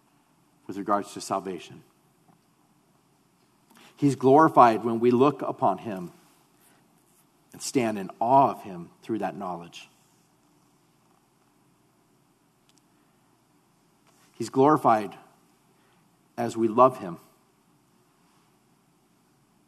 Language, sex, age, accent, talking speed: English, male, 50-69, American, 80 wpm